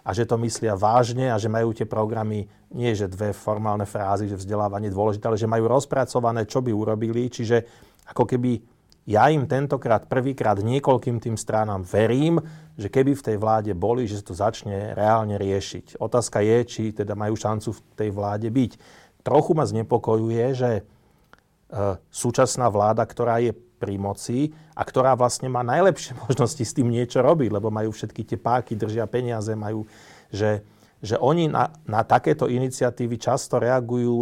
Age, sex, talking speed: 40-59, male, 170 wpm